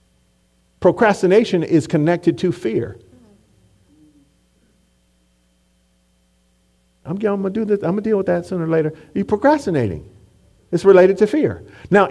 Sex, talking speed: male, 110 wpm